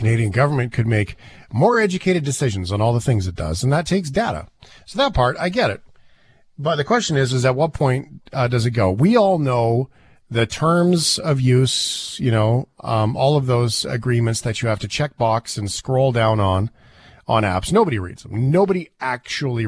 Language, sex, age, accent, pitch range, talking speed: English, male, 40-59, American, 115-150 Hz, 200 wpm